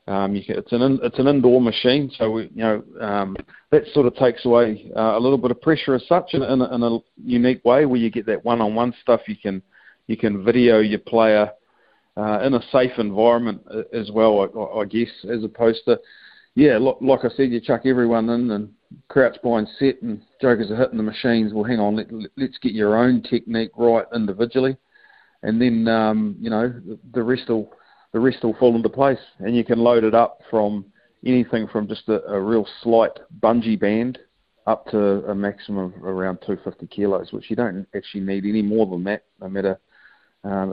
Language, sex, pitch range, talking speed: English, male, 105-120 Hz, 210 wpm